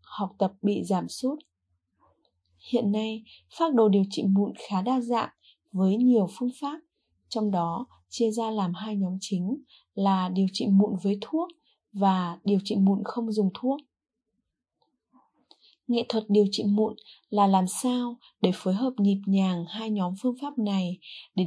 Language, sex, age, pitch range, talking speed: Vietnamese, female, 20-39, 195-245 Hz, 165 wpm